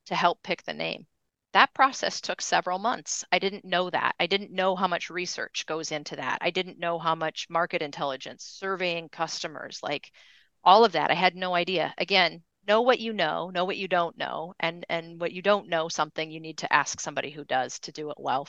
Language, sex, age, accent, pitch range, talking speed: English, female, 30-49, American, 165-200 Hz, 220 wpm